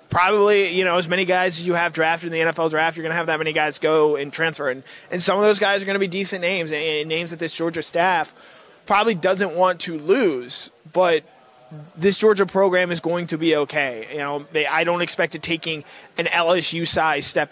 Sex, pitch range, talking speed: male, 150-175 Hz, 225 wpm